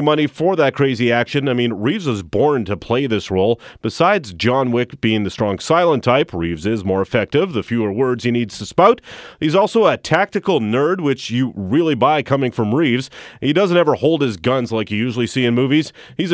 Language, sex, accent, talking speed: English, male, American, 215 wpm